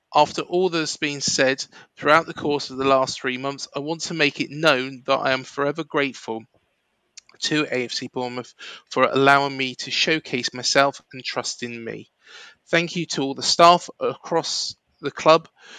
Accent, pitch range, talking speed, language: British, 130-155 Hz, 175 wpm, English